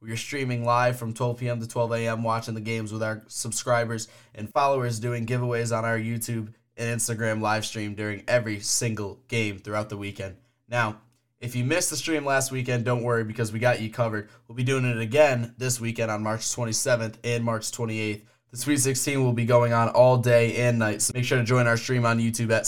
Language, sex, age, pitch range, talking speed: English, male, 10-29, 110-125 Hz, 220 wpm